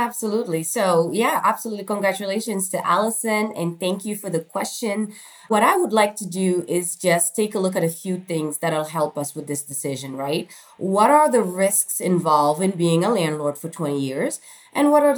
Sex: female